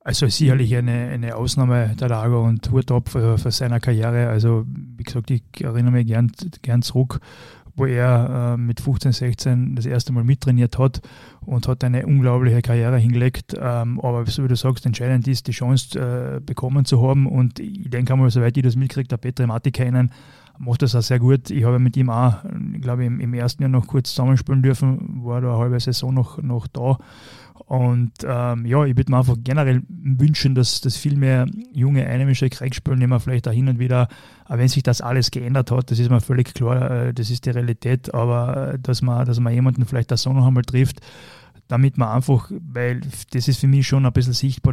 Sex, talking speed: male, 210 wpm